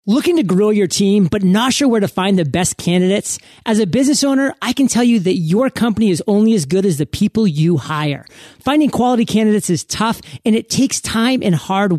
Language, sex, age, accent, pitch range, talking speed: English, male, 30-49, American, 180-230 Hz, 225 wpm